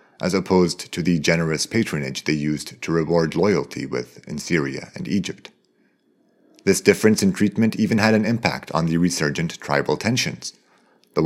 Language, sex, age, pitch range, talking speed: English, male, 40-59, 80-115 Hz, 160 wpm